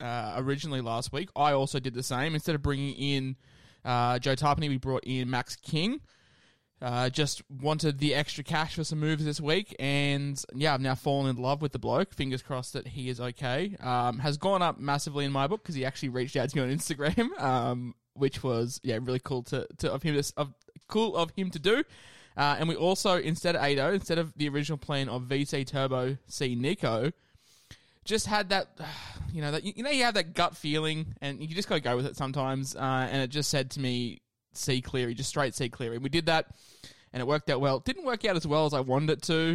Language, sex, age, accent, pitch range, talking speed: English, male, 20-39, Australian, 125-155 Hz, 230 wpm